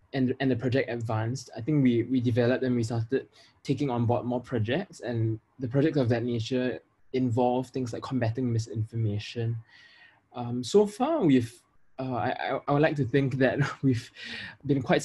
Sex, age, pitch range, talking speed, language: male, 20-39, 115-130 Hz, 175 wpm, English